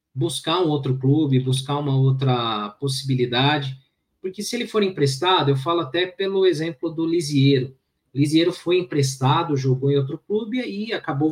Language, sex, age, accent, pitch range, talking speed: Portuguese, male, 20-39, Brazilian, 130-165 Hz, 155 wpm